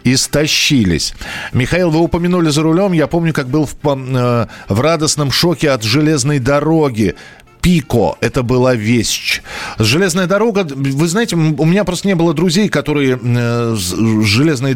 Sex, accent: male, native